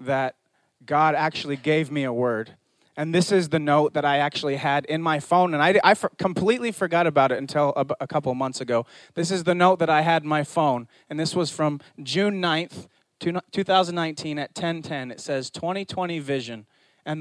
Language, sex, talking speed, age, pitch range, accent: English, male, 200 wpm, 30-49, 150-195 Hz, American